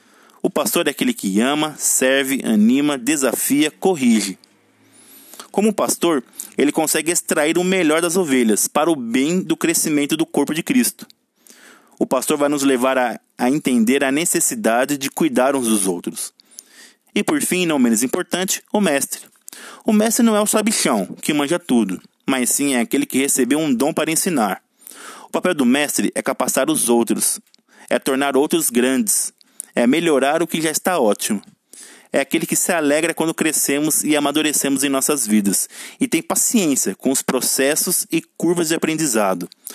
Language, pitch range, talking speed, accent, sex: Portuguese, 130-190 Hz, 170 wpm, Brazilian, male